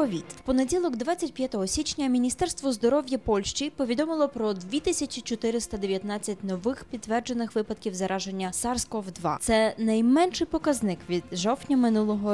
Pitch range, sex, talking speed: 200-270 Hz, female, 105 wpm